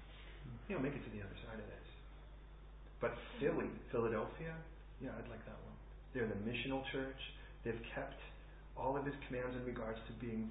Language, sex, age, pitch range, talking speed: English, male, 40-59, 110-145 Hz, 185 wpm